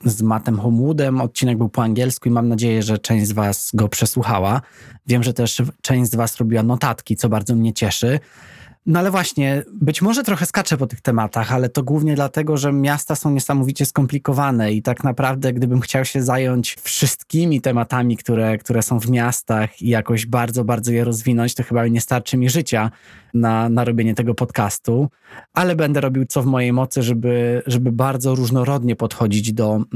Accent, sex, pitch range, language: native, male, 120-140 Hz, Polish